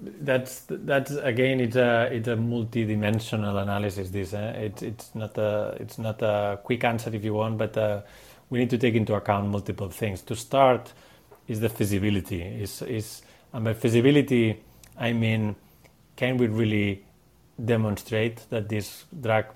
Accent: Spanish